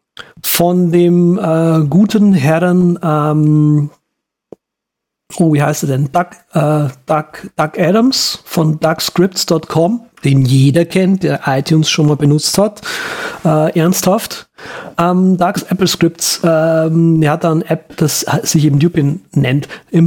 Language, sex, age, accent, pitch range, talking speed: German, male, 40-59, German, 150-175 Hz, 125 wpm